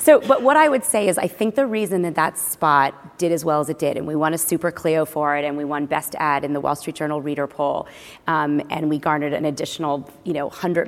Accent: American